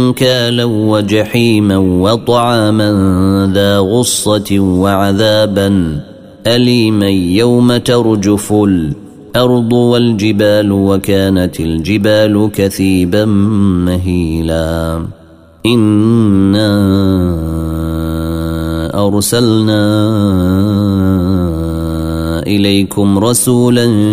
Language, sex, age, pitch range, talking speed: Arabic, male, 30-49, 90-105 Hz, 45 wpm